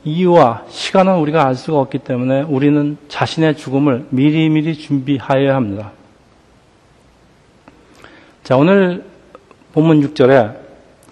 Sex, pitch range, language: male, 135-170 Hz, Korean